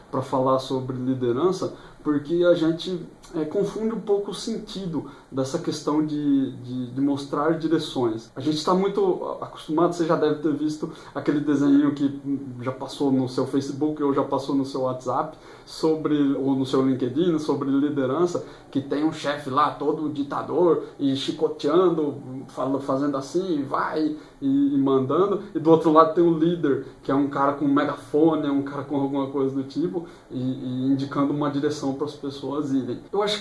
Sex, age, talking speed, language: male, 20-39, 175 wpm, Portuguese